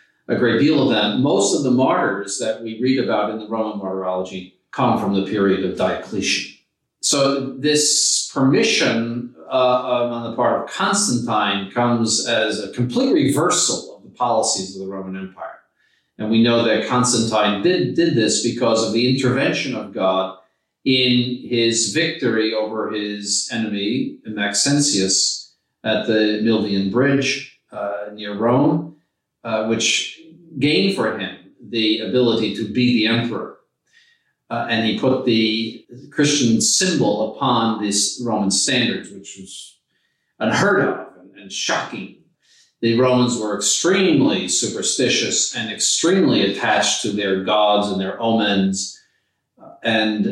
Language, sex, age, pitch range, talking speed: English, male, 50-69, 105-125 Hz, 135 wpm